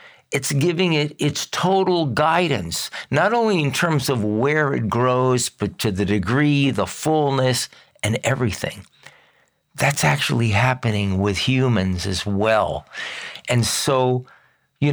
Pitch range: 105-150 Hz